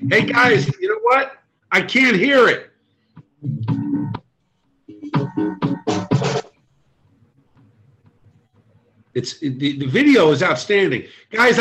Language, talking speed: English, 85 wpm